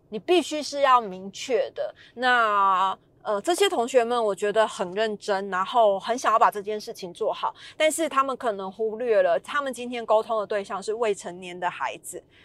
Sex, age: female, 20-39